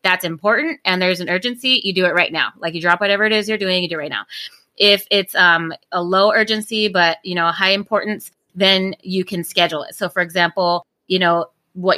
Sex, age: female, 20-39